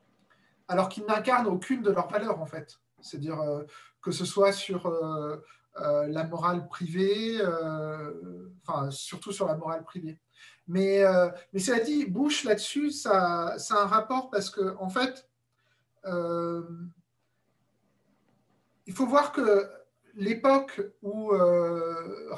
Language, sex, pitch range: French, male, 175-230 Hz